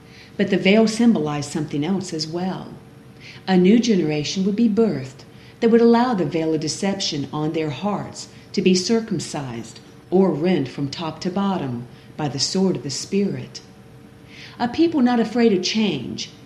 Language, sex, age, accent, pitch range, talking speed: English, female, 50-69, American, 150-210 Hz, 165 wpm